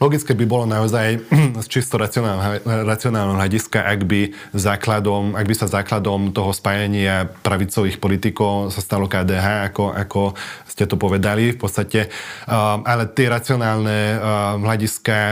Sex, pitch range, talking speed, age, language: male, 100-110 Hz, 130 wpm, 20-39, Slovak